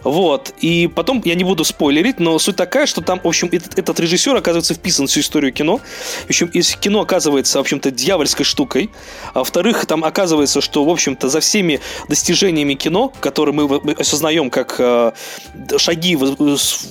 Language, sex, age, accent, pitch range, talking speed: Russian, male, 20-39, native, 145-185 Hz, 180 wpm